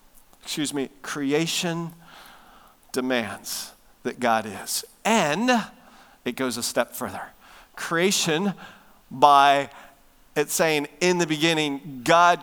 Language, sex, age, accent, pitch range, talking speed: English, male, 50-69, American, 155-230 Hz, 100 wpm